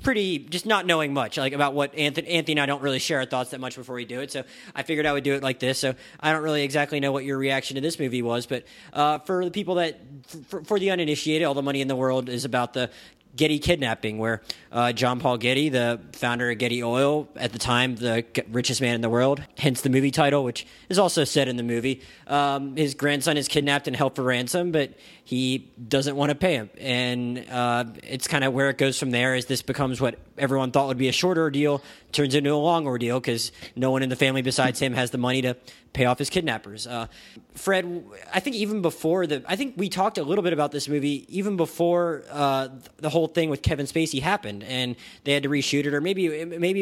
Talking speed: 245 wpm